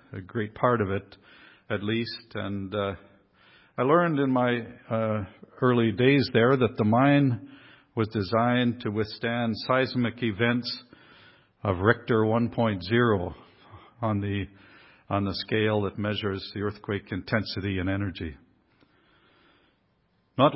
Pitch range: 100-120 Hz